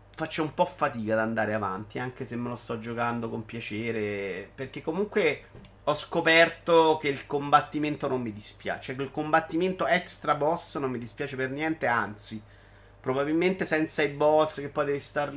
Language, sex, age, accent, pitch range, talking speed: Italian, male, 30-49, native, 115-155 Hz, 175 wpm